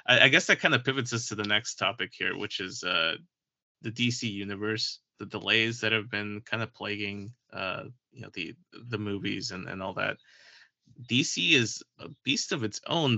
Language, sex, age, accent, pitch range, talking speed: English, male, 30-49, American, 105-120 Hz, 195 wpm